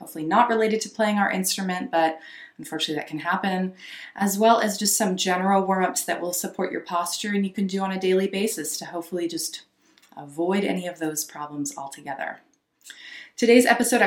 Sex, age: female, 20-39